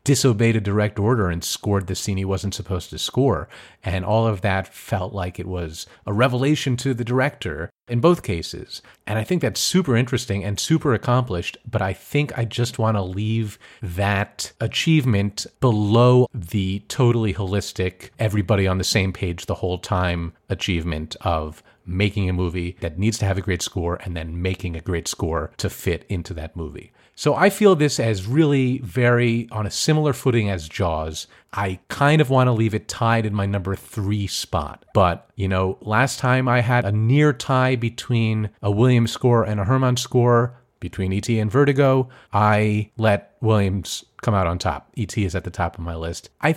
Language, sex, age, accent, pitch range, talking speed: English, male, 30-49, American, 95-120 Hz, 190 wpm